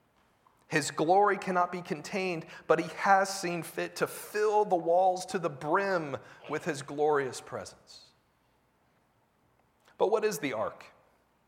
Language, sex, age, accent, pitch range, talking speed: English, male, 40-59, American, 125-170 Hz, 135 wpm